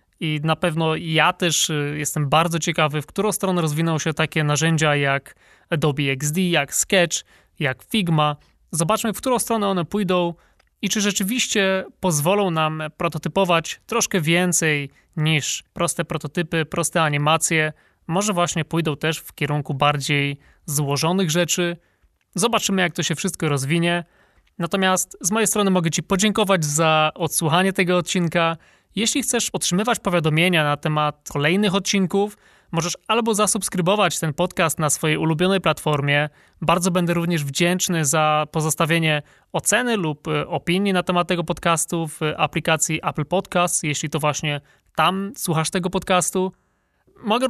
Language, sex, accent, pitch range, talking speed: Polish, male, native, 155-190 Hz, 140 wpm